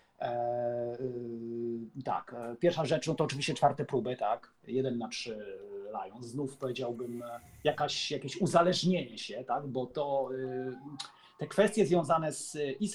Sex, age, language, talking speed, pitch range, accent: male, 40-59, Polish, 120 wpm, 130-175 Hz, native